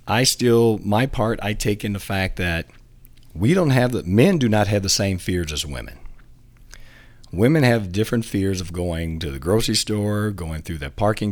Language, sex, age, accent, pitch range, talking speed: English, male, 50-69, American, 90-115 Hz, 195 wpm